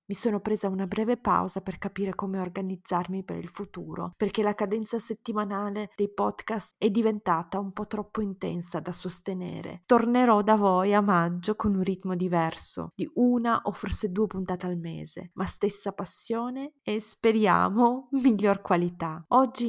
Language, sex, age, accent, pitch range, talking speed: Italian, female, 20-39, native, 180-220 Hz, 160 wpm